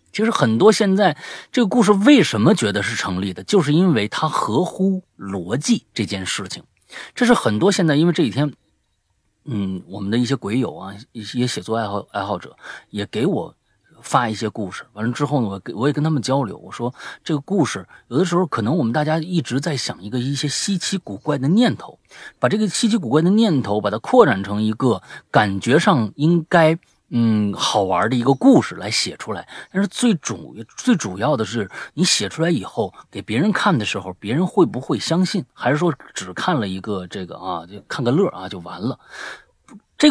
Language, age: Chinese, 30-49